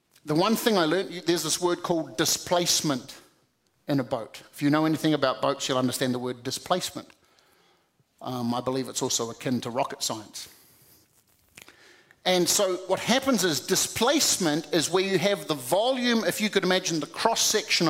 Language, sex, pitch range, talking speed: English, male, 145-195 Hz, 175 wpm